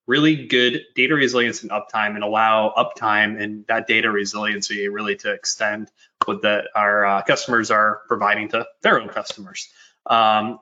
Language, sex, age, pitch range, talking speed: English, male, 20-39, 105-125 Hz, 155 wpm